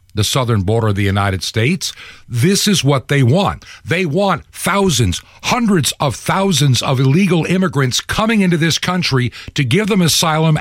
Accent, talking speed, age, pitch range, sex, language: American, 165 wpm, 60-79, 90-145 Hz, male, English